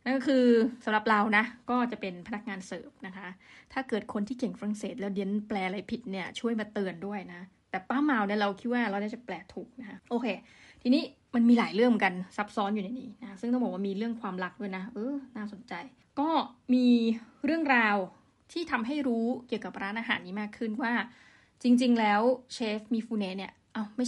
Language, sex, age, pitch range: Thai, female, 20-39, 205-250 Hz